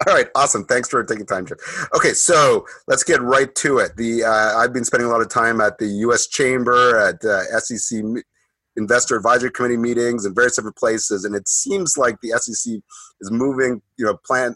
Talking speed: 210 wpm